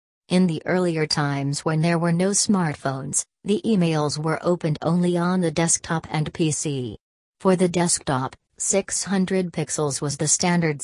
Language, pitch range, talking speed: English, 150-180 Hz, 150 wpm